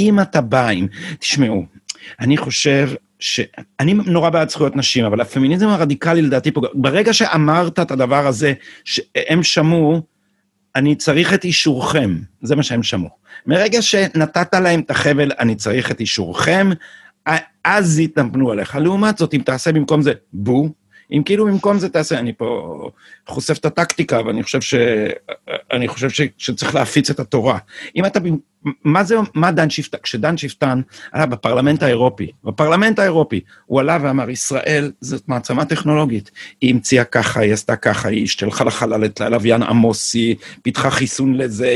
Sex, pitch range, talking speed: male, 120-160 Hz, 155 wpm